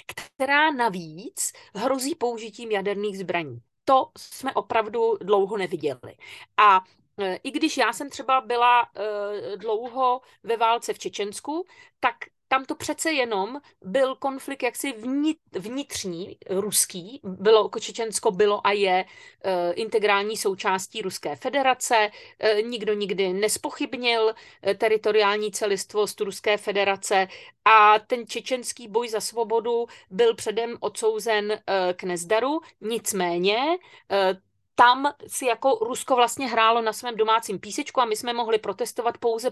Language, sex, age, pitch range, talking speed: Slovak, female, 40-59, 205-265 Hz, 120 wpm